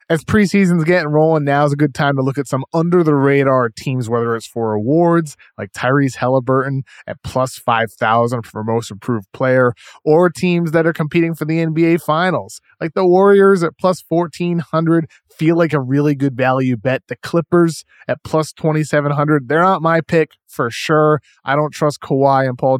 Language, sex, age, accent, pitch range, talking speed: English, male, 20-39, American, 120-155 Hz, 175 wpm